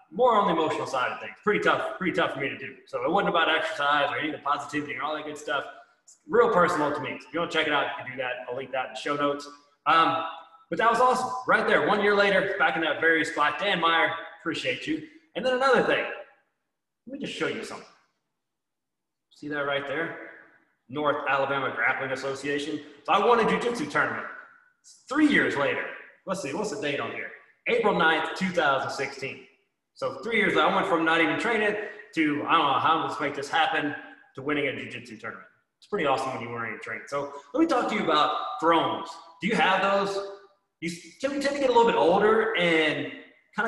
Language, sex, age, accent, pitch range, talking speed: English, male, 20-39, American, 145-220 Hz, 225 wpm